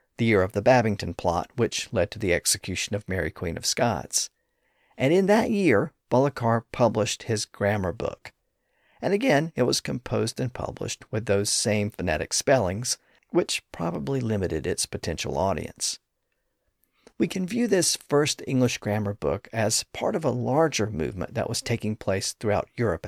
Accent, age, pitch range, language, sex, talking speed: American, 50-69, 100-130 Hz, English, male, 165 wpm